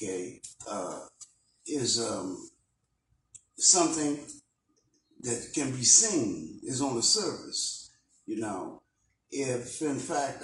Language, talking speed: English, 100 wpm